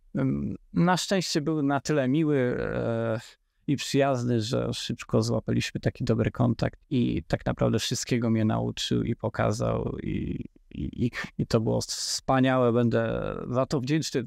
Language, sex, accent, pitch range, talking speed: Polish, male, native, 115-145 Hz, 145 wpm